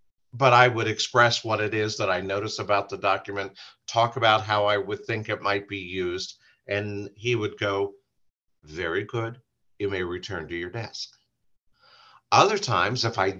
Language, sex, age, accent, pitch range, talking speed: English, male, 50-69, American, 100-120 Hz, 175 wpm